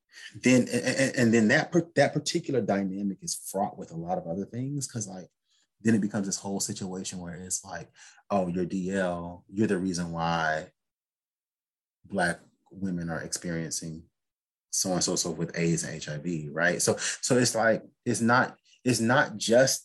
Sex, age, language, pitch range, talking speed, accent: male, 30-49, English, 85-120 Hz, 165 wpm, American